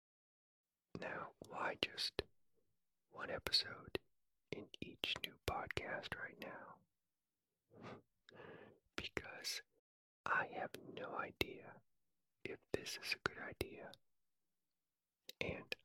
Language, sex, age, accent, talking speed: English, male, 40-59, American, 85 wpm